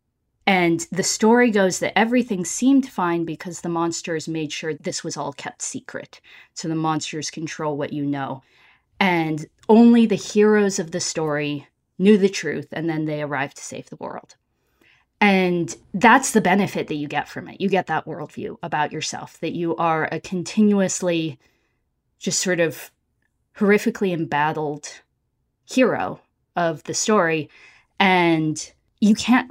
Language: English